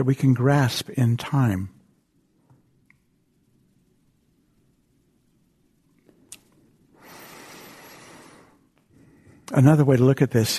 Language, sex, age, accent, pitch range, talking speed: English, male, 60-79, American, 110-145 Hz, 70 wpm